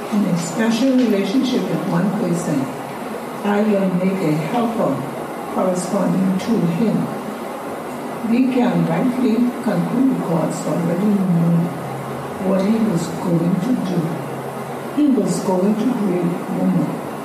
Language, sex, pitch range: English, female, 180-225 Hz